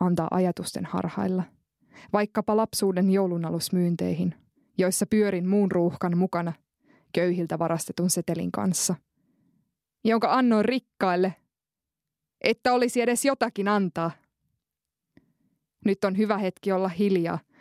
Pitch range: 170-200 Hz